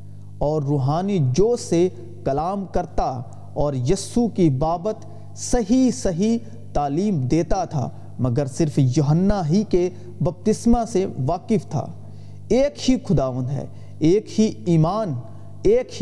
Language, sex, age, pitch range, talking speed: Urdu, male, 40-59, 140-210 Hz, 120 wpm